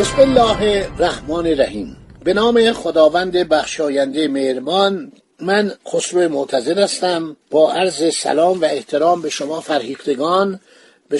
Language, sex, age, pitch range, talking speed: Persian, male, 50-69, 170-235 Hz, 120 wpm